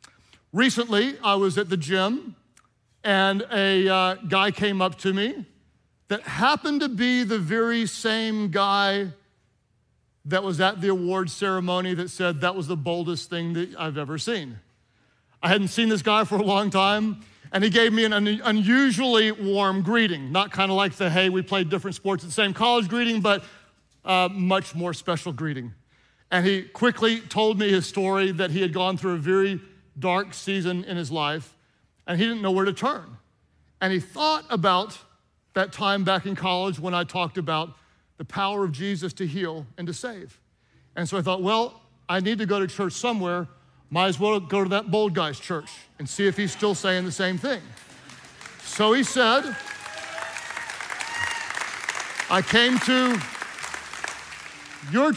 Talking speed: 175 wpm